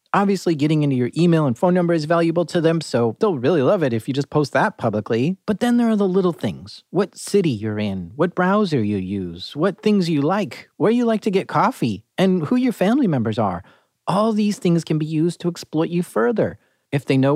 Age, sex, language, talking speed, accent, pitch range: 30-49, male, English, 230 wpm, American, 140-195 Hz